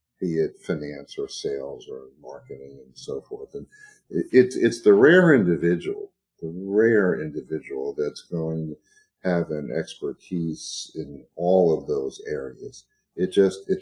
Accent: American